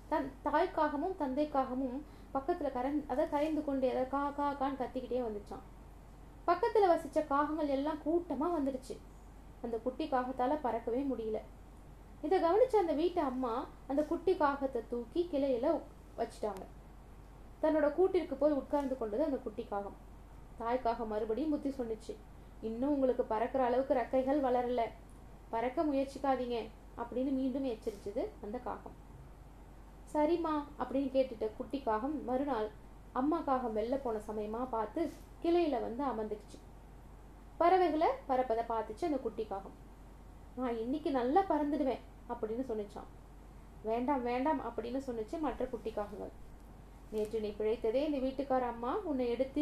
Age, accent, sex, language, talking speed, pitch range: 20-39, native, female, Tamil, 115 wpm, 235-295 Hz